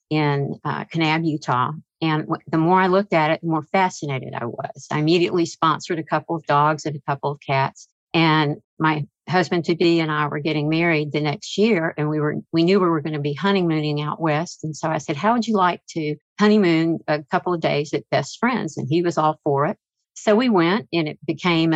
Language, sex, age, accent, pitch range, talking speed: English, female, 50-69, American, 150-180 Hz, 225 wpm